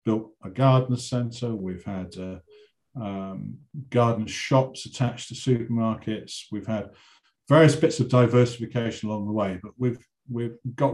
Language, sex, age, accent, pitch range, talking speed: English, male, 50-69, British, 100-125 Hz, 145 wpm